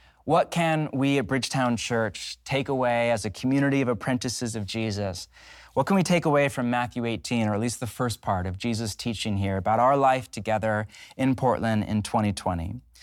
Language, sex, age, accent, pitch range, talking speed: English, male, 30-49, American, 110-135 Hz, 190 wpm